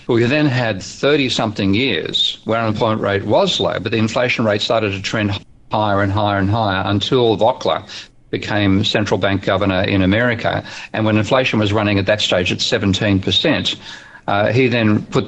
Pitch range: 100-115 Hz